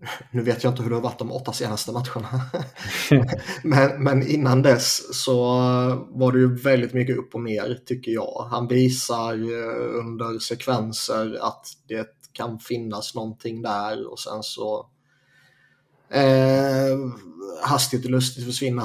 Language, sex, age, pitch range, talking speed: Swedish, male, 20-39, 115-135 Hz, 145 wpm